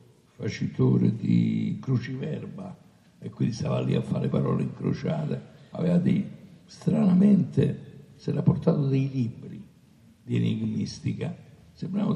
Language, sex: Italian, male